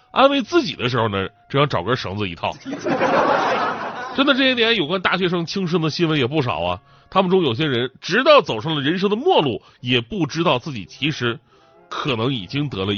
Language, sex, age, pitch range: Chinese, male, 30-49, 130-195 Hz